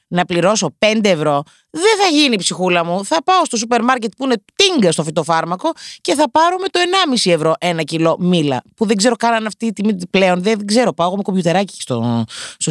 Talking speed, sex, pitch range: 210 wpm, female, 170-235 Hz